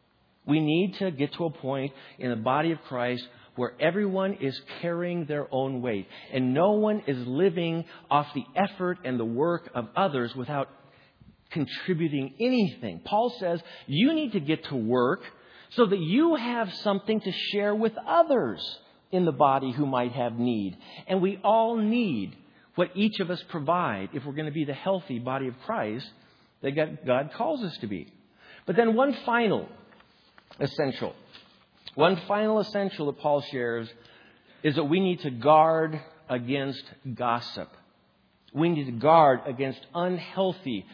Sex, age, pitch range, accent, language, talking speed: male, 50-69, 130-195 Hz, American, English, 160 wpm